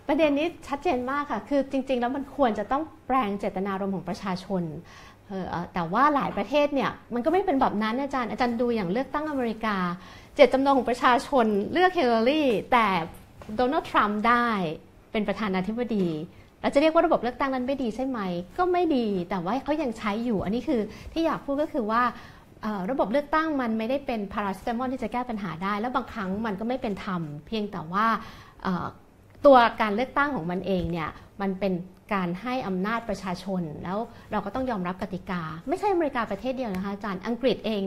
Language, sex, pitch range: Thai, female, 195-265 Hz